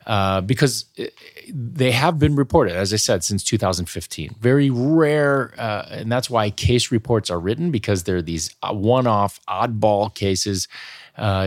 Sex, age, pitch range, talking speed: male, 30-49, 100-130 Hz, 145 wpm